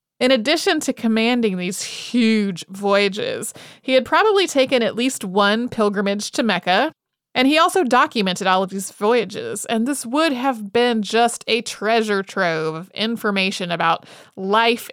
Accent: American